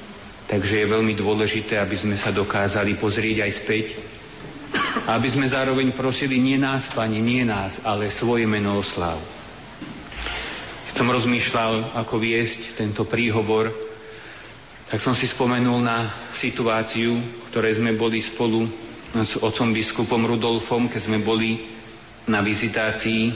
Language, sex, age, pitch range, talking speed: Slovak, male, 40-59, 110-120 Hz, 130 wpm